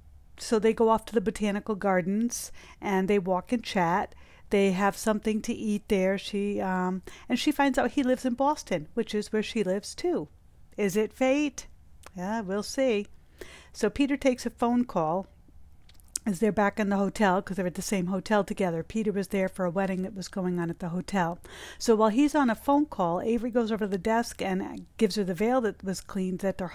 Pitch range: 190-235 Hz